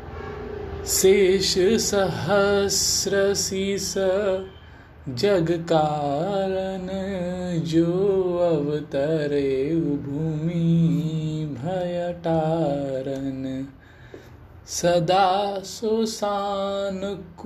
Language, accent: Hindi, native